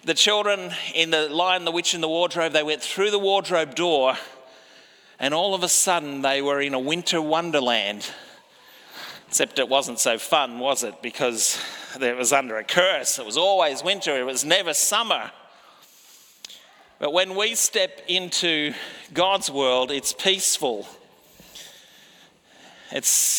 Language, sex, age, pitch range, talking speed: English, male, 40-59, 150-195 Hz, 150 wpm